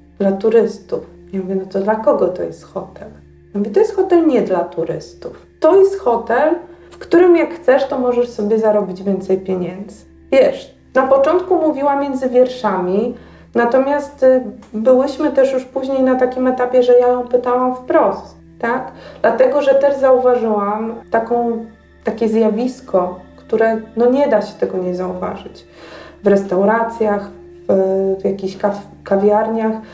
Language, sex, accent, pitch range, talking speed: Polish, female, native, 200-255 Hz, 140 wpm